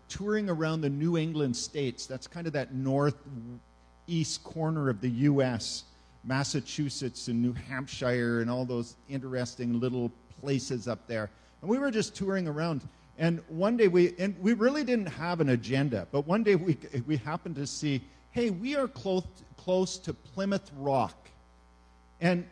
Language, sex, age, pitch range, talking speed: English, male, 50-69, 130-195 Hz, 165 wpm